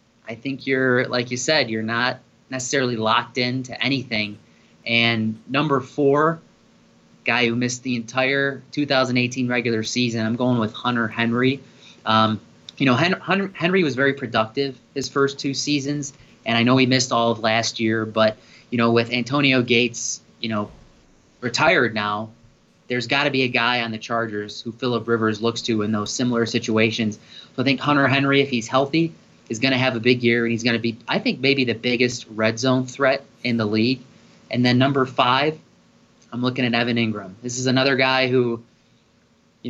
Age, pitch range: 20-39, 115-135 Hz